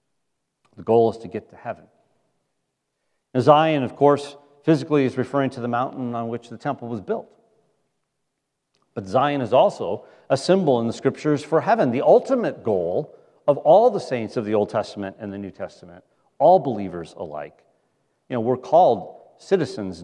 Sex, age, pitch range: male, 40-59, 125-155 Hz